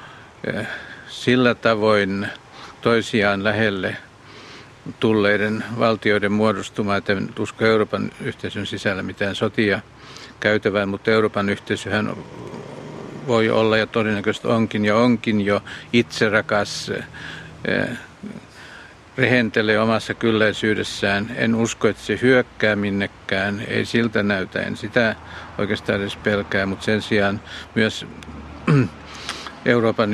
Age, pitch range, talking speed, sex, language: 50-69, 100-115 Hz, 100 wpm, male, Finnish